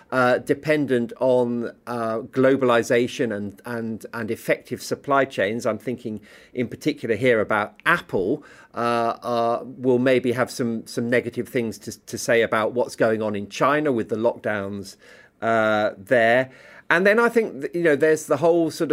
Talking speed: 160 wpm